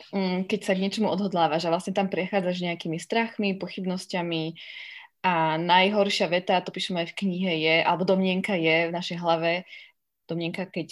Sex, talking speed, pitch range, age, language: female, 165 wpm, 175-205 Hz, 20-39, Slovak